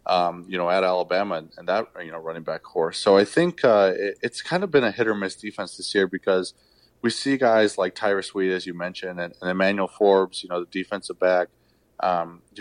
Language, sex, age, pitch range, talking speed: English, male, 20-39, 90-110 Hz, 240 wpm